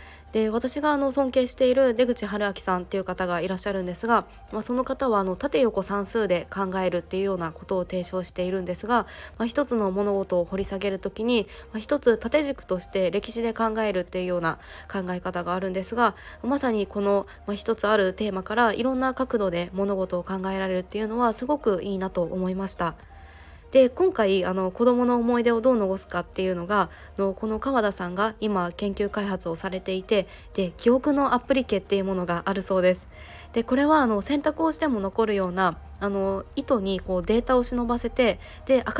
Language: Japanese